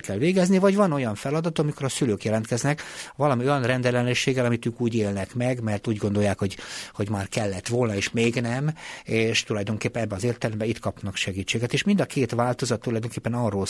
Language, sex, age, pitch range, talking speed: Hungarian, male, 60-79, 100-125 Hz, 195 wpm